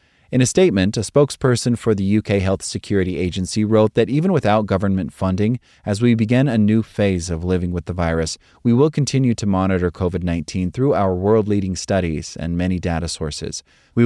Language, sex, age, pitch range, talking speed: English, male, 30-49, 90-115 Hz, 185 wpm